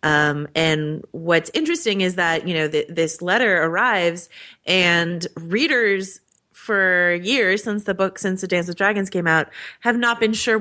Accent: American